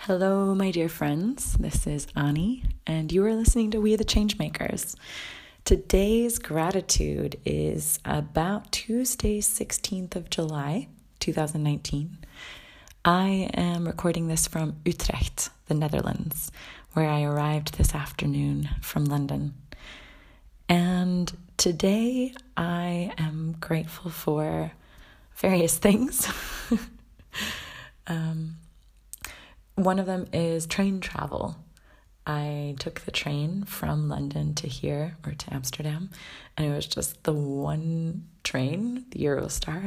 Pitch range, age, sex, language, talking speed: 145-190 Hz, 30-49, female, English, 115 wpm